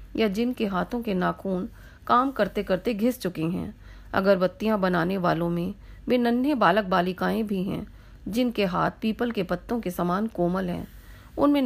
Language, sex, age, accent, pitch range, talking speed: Hindi, female, 40-59, native, 185-235 Hz, 155 wpm